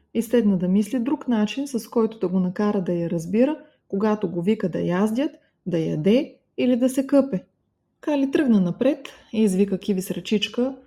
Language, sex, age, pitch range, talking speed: Bulgarian, female, 20-39, 185-275 Hz, 175 wpm